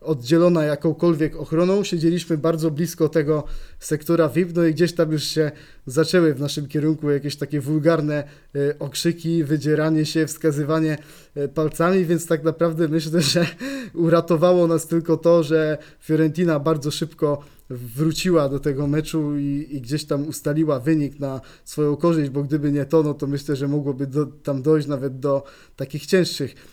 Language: Polish